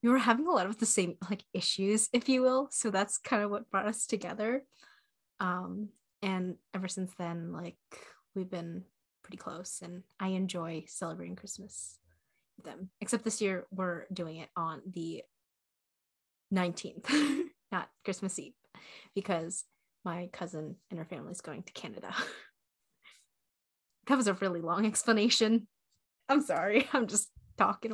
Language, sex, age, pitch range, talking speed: English, female, 20-39, 185-230 Hz, 150 wpm